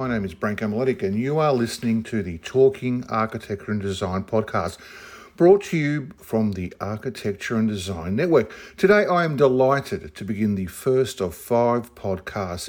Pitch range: 95-130 Hz